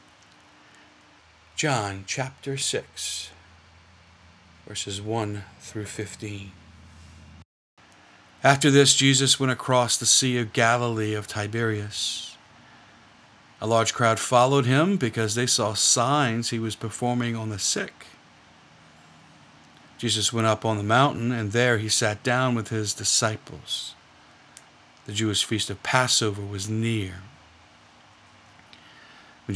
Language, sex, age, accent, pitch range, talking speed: English, male, 50-69, American, 100-120 Hz, 110 wpm